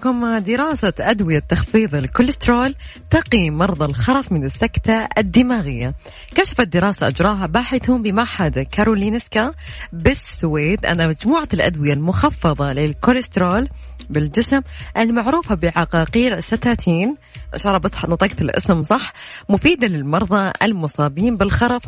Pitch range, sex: 165-245 Hz, female